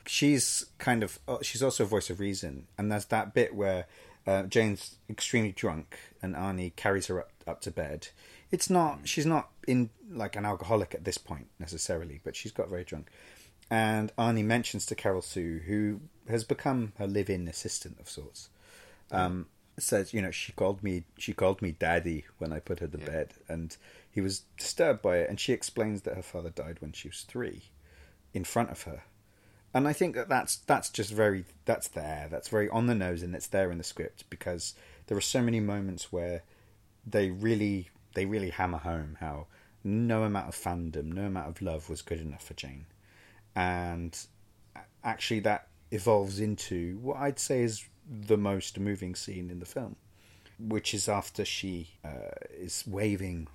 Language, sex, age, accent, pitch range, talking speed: English, male, 30-49, British, 90-110 Hz, 185 wpm